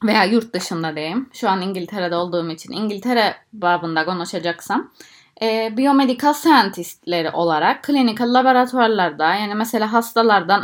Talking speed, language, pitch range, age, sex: 120 wpm, Turkish, 175-235 Hz, 20-39, female